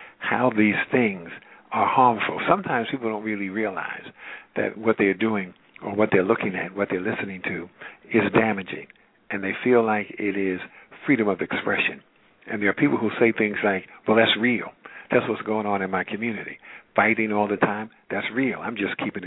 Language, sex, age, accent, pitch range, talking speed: English, male, 50-69, American, 105-125 Hz, 190 wpm